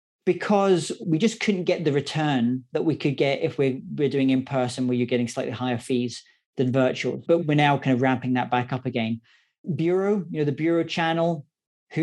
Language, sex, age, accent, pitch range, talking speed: English, male, 30-49, British, 135-165 Hz, 205 wpm